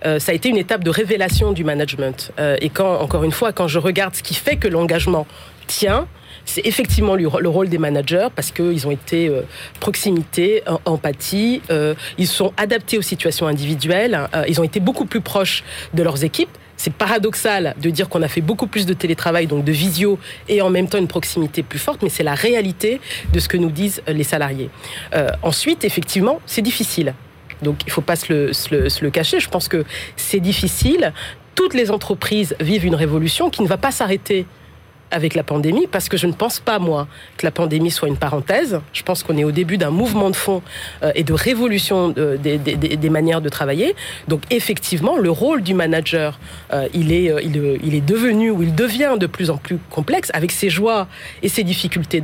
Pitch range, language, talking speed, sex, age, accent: 155-205 Hz, French, 200 wpm, female, 40-59, French